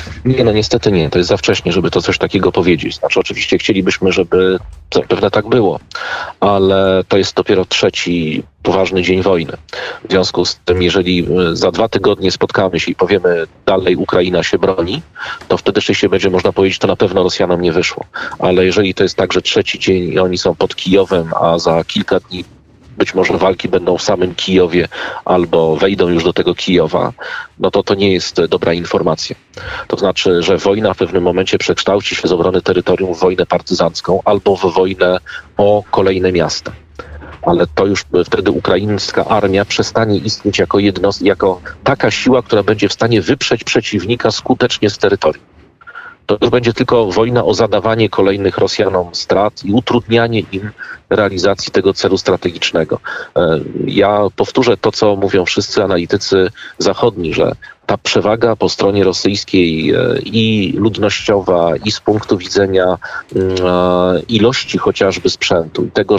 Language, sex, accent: Polish, male, native